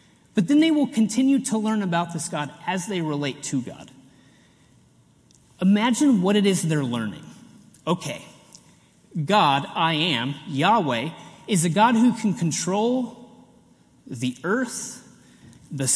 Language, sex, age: English, male, 30-49